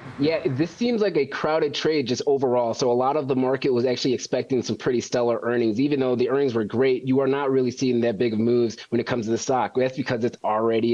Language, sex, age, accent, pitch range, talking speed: English, male, 20-39, American, 120-140 Hz, 260 wpm